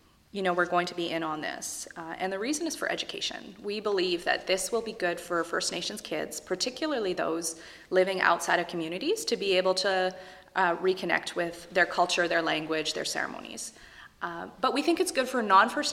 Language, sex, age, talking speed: English, female, 30-49, 205 wpm